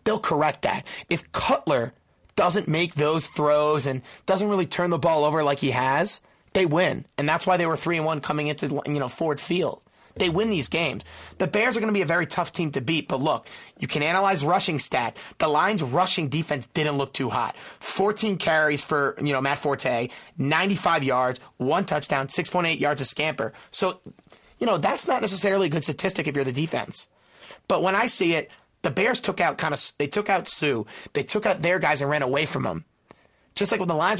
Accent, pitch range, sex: American, 145-190 Hz, male